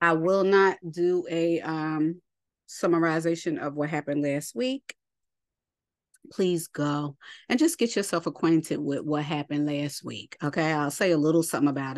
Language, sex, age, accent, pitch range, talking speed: English, female, 30-49, American, 150-180 Hz, 155 wpm